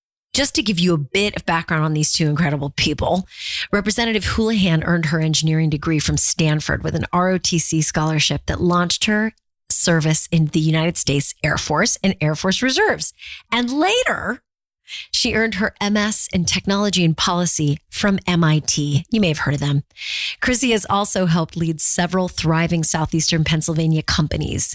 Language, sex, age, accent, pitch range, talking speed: English, female, 30-49, American, 155-200 Hz, 160 wpm